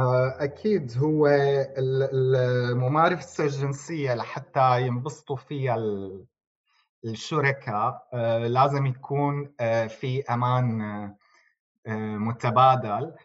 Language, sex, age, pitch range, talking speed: Arabic, male, 30-49, 120-140 Hz, 60 wpm